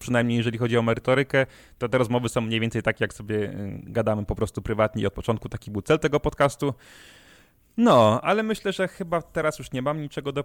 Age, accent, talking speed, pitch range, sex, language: 20-39, native, 205 wpm, 110-140 Hz, male, Polish